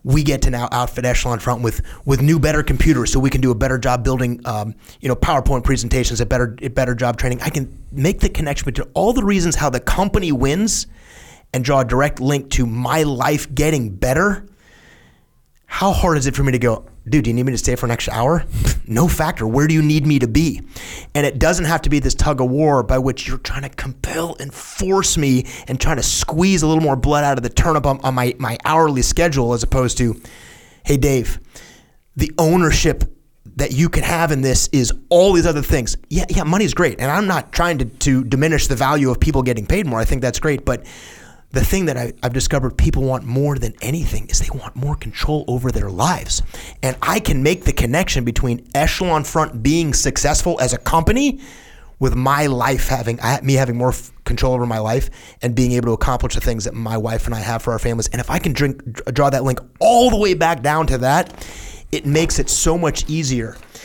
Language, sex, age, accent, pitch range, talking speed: English, male, 30-49, American, 125-150 Hz, 225 wpm